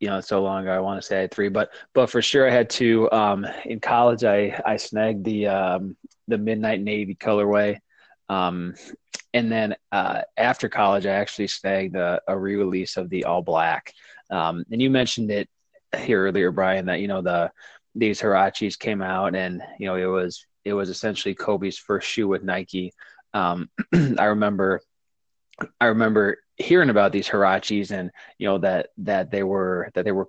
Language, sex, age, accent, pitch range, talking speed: English, male, 20-39, American, 95-110 Hz, 190 wpm